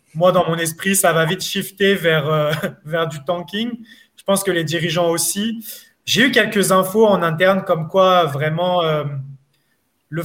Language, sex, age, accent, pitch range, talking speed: French, male, 20-39, French, 160-195 Hz, 175 wpm